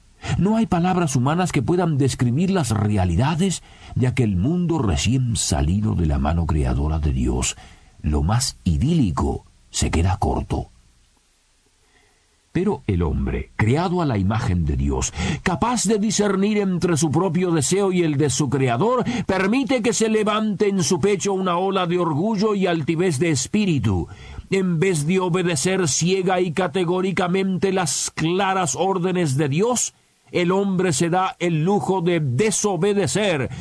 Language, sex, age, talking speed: Spanish, male, 50-69, 145 wpm